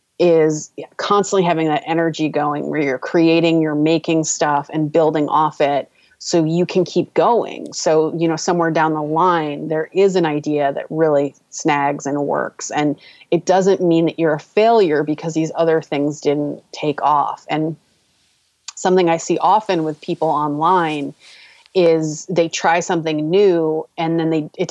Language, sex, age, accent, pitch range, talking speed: English, female, 30-49, American, 150-175 Hz, 170 wpm